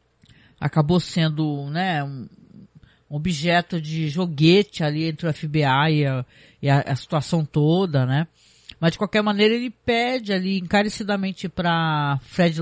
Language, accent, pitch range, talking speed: Portuguese, Brazilian, 155-215 Hz, 140 wpm